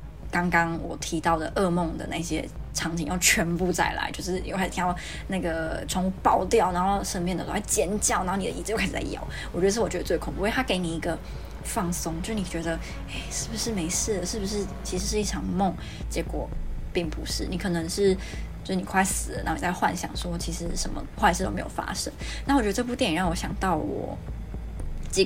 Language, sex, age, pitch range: Chinese, female, 20-39, 170-210 Hz